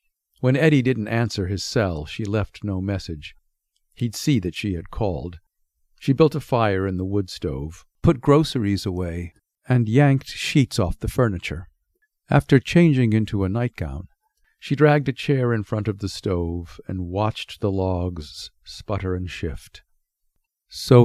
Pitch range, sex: 90-125 Hz, male